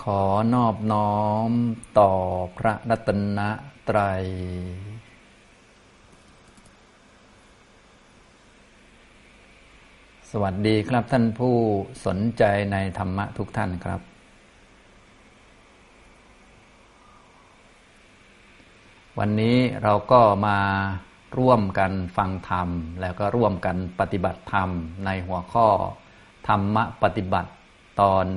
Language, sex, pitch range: Thai, male, 95-110 Hz